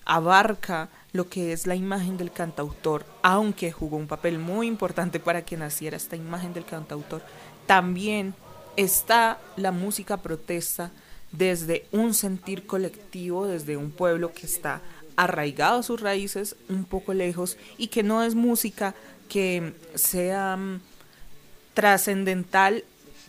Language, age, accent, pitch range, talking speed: Spanish, 20-39, Colombian, 170-200 Hz, 130 wpm